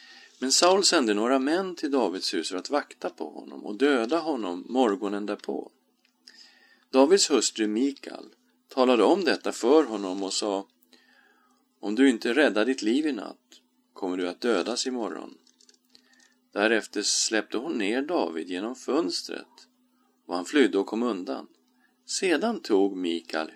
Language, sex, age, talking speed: Swedish, male, 40-59, 145 wpm